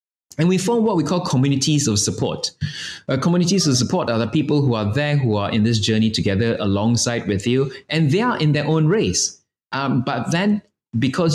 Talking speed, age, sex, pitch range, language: 205 wpm, 20-39, male, 105-140 Hz, English